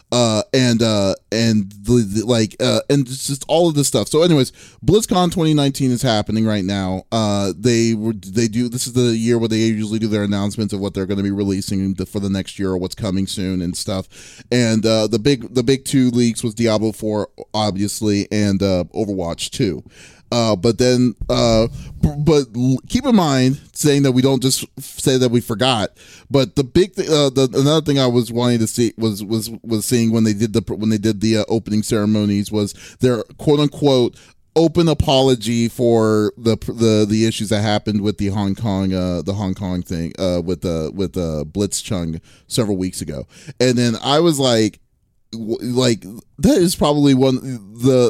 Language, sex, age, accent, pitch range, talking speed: English, male, 30-49, American, 105-130 Hz, 195 wpm